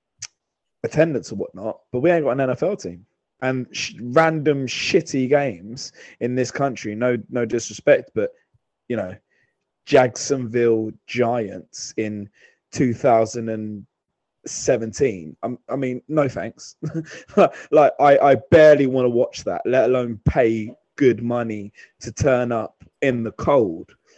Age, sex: 20-39, male